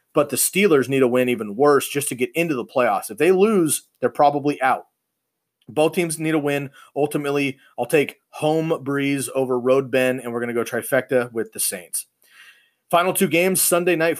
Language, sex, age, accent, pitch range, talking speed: English, male, 30-49, American, 125-150 Hz, 200 wpm